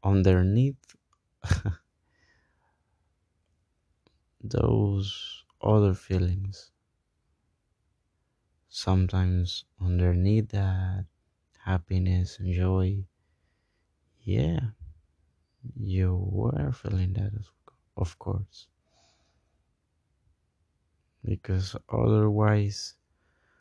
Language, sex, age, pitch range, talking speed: Spanish, male, 20-39, 80-100 Hz, 50 wpm